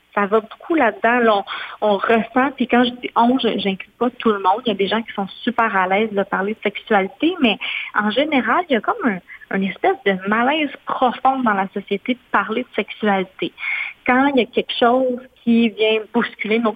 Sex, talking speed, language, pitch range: female, 235 wpm, French, 200-245 Hz